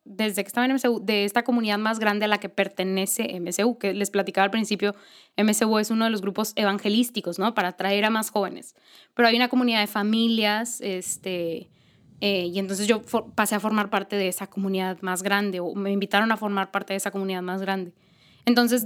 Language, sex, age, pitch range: Spanish, female, 10-29, 195-240 Hz